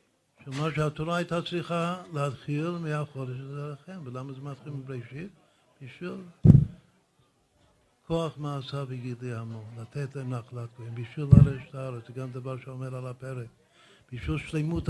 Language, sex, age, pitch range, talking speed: Hebrew, male, 60-79, 125-155 Hz, 120 wpm